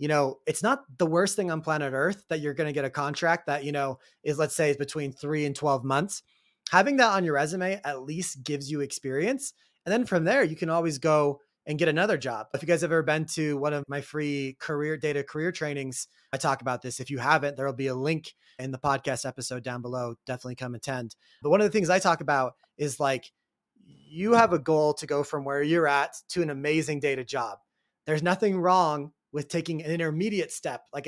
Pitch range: 140-170 Hz